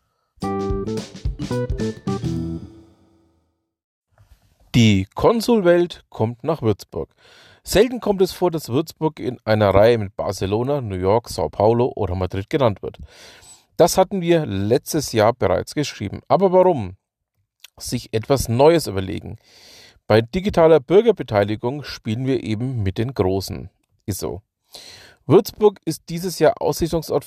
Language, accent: German, German